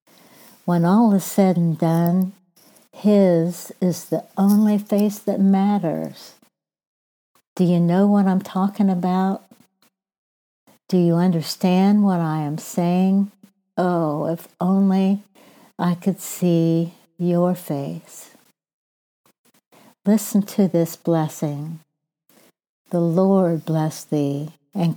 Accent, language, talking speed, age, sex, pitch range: American, English, 105 wpm, 60-79, female, 155-190 Hz